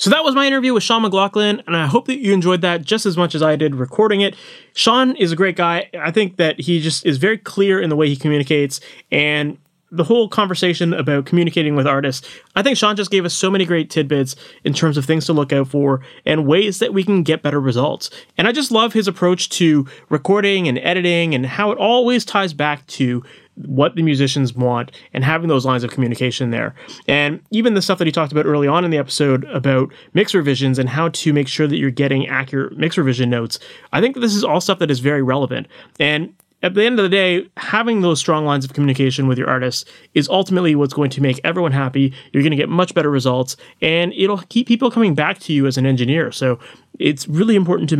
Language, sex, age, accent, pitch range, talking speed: English, male, 30-49, American, 135-190 Hz, 235 wpm